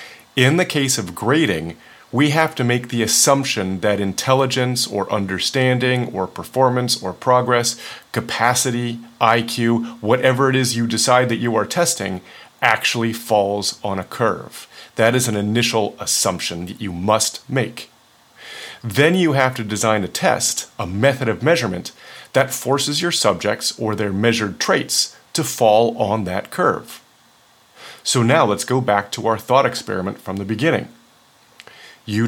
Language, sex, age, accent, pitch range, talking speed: English, male, 40-59, American, 105-130 Hz, 150 wpm